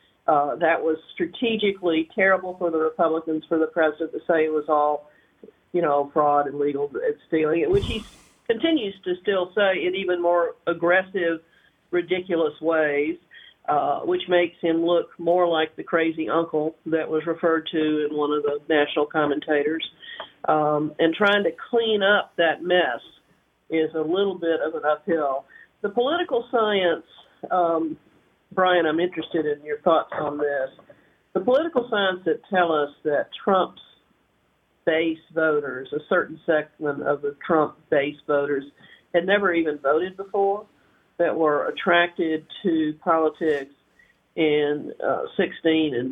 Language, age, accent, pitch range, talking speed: English, 50-69, American, 150-180 Hz, 150 wpm